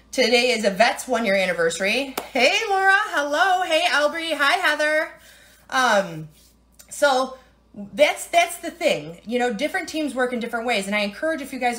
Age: 30-49